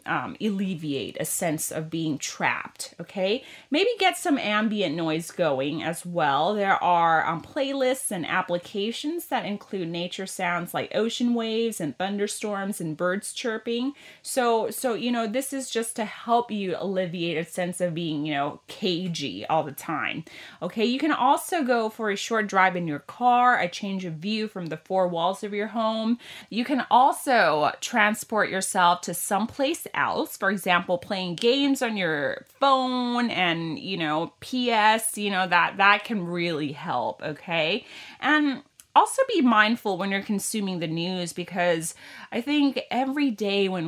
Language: Thai